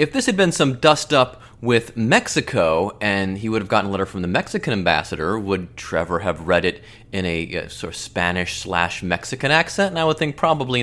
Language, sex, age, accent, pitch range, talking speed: English, male, 30-49, American, 105-155 Hz, 200 wpm